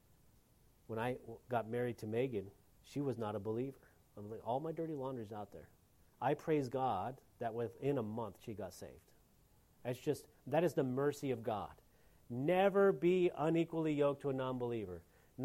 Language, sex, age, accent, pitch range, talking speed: English, male, 40-59, American, 110-170 Hz, 165 wpm